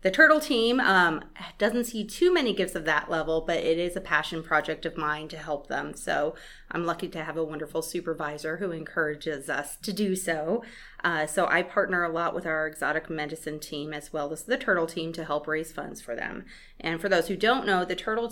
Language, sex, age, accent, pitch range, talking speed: English, female, 30-49, American, 155-185 Hz, 225 wpm